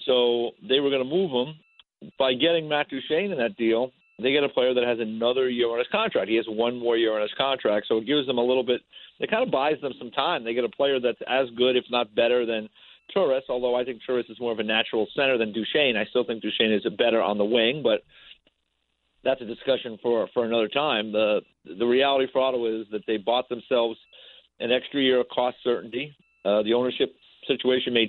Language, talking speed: English, 235 wpm